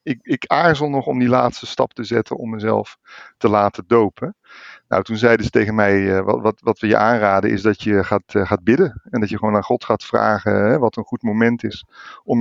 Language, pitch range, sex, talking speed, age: Dutch, 110-130 Hz, male, 230 wpm, 50-69